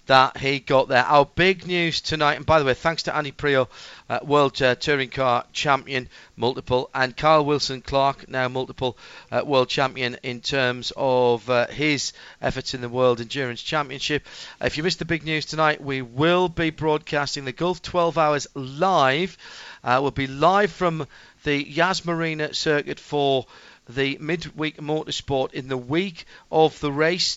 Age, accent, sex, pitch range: 40-59, British, male, 130-165 Hz